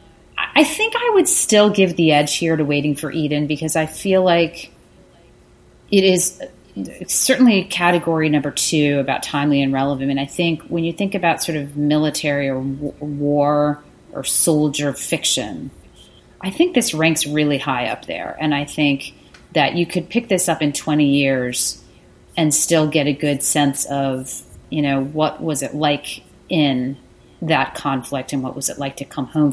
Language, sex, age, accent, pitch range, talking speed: English, female, 30-49, American, 140-170 Hz, 175 wpm